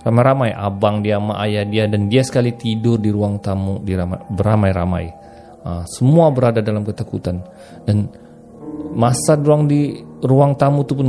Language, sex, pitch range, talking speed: Malay, male, 100-125 Hz, 135 wpm